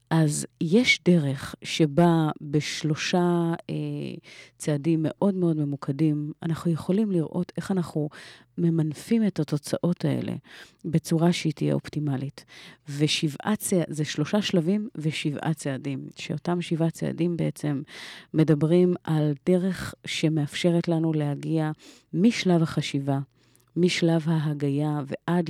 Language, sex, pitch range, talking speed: Hebrew, female, 150-175 Hz, 105 wpm